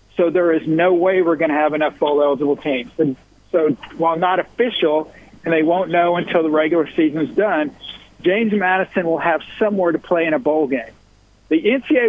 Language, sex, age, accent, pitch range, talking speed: English, male, 50-69, American, 150-185 Hz, 195 wpm